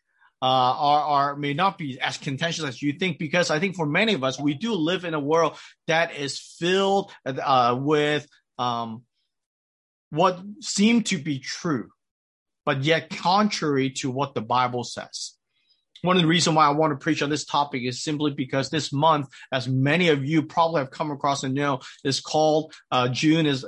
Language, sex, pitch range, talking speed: English, male, 130-160 Hz, 190 wpm